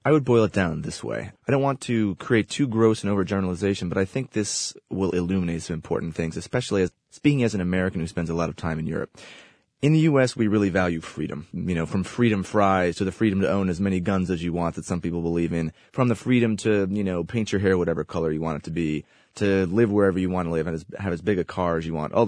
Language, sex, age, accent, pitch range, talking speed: English, male, 30-49, American, 85-115 Hz, 270 wpm